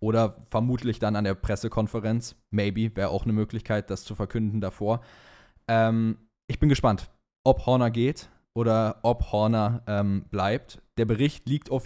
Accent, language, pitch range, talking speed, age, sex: German, German, 105-130 Hz, 155 wpm, 20-39, male